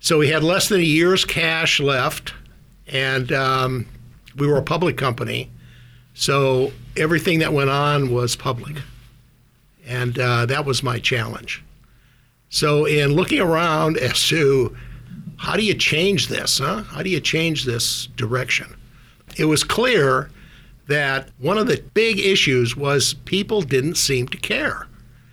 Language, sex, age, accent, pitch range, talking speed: English, male, 60-79, American, 125-160 Hz, 145 wpm